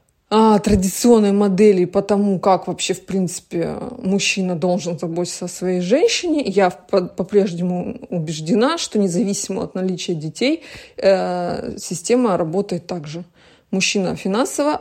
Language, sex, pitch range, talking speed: Russian, female, 180-225 Hz, 120 wpm